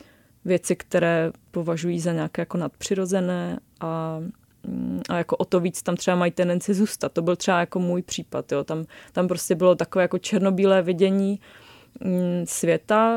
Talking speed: 155 wpm